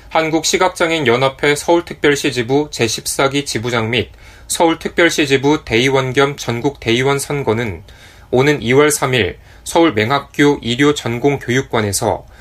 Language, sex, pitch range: Korean, male, 105-145 Hz